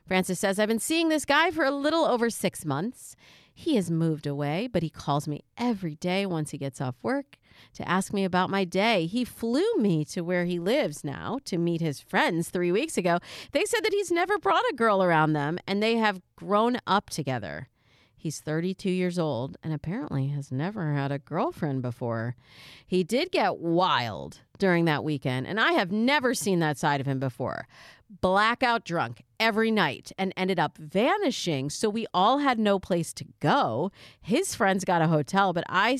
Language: English